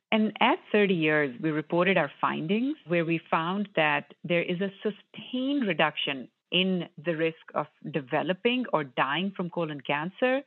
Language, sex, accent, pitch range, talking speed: English, female, Indian, 155-205 Hz, 155 wpm